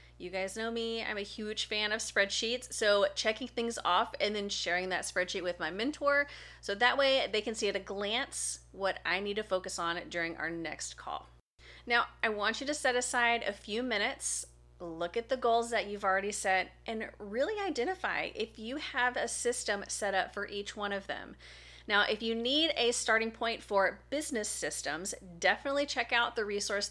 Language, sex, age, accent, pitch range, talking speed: English, female, 30-49, American, 180-235 Hz, 200 wpm